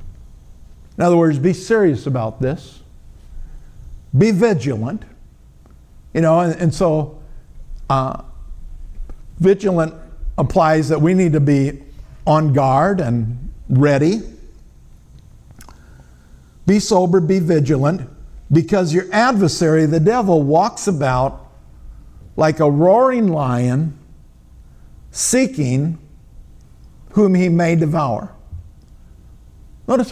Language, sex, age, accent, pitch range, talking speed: English, male, 50-69, American, 120-185 Hz, 95 wpm